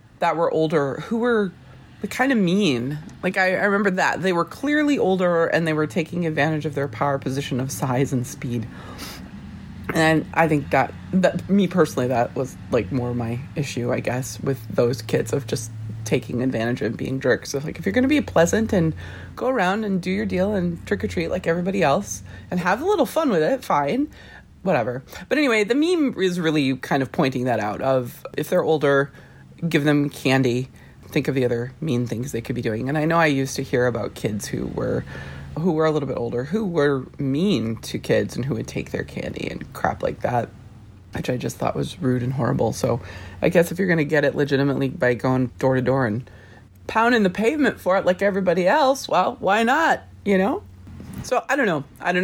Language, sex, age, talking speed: English, female, 30-49, 215 wpm